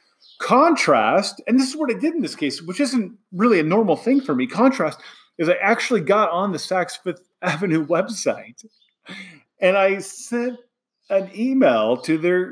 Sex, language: male, English